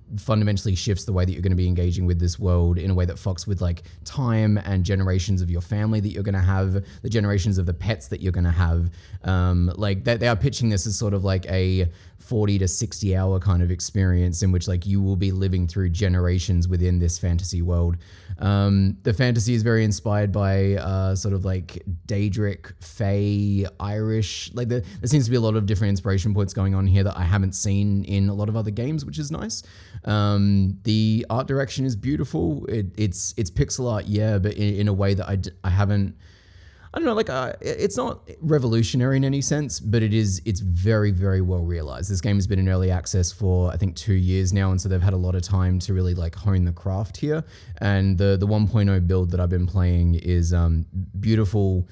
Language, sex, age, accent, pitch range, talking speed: English, male, 20-39, Australian, 90-105 Hz, 225 wpm